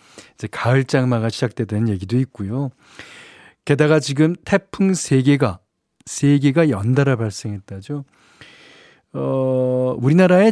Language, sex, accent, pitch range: Korean, male, native, 105-140 Hz